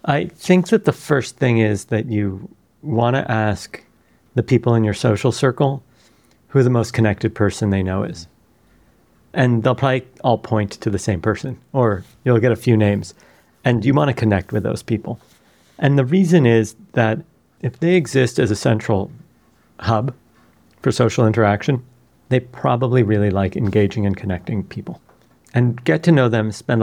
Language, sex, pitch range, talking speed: English, male, 105-130 Hz, 175 wpm